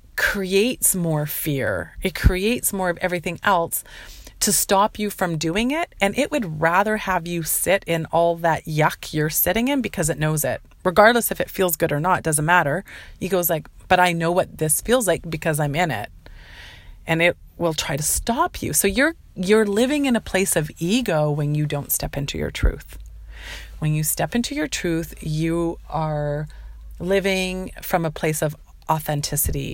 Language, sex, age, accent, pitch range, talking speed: English, female, 30-49, American, 155-190 Hz, 190 wpm